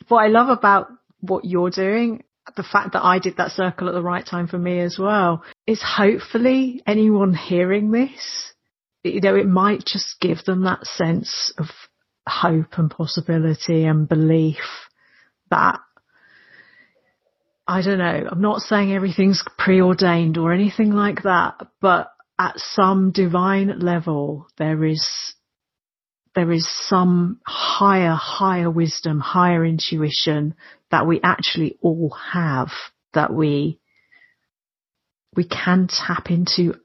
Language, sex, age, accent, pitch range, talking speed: English, female, 40-59, British, 170-205 Hz, 130 wpm